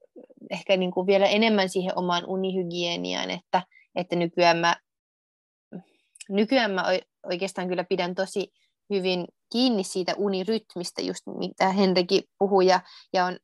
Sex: female